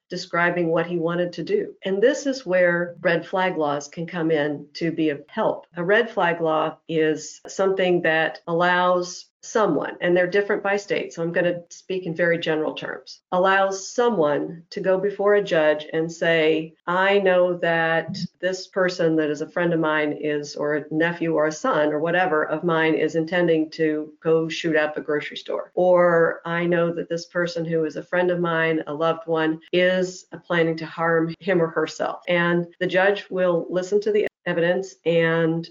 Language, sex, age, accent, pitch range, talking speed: English, female, 50-69, American, 160-185 Hz, 195 wpm